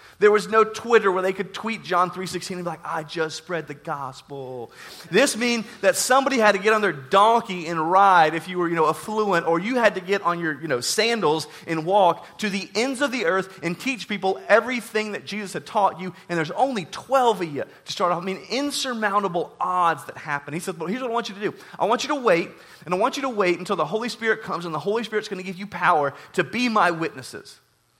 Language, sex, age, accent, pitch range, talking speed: English, male, 30-49, American, 170-215 Hz, 250 wpm